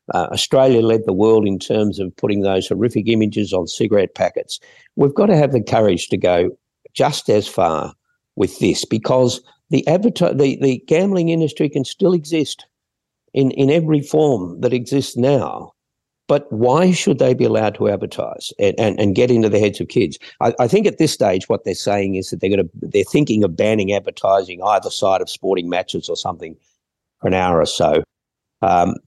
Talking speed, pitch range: 190 wpm, 95-140 Hz